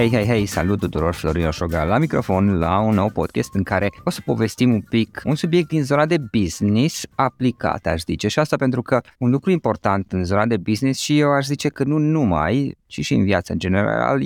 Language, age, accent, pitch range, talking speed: Romanian, 20-39, native, 95-125 Hz, 225 wpm